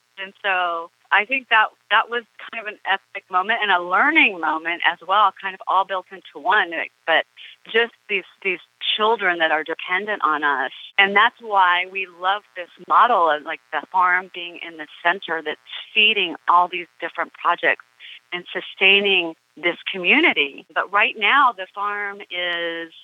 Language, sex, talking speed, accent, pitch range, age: English, female, 170 wpm, American, 170-210 Hz, 40-59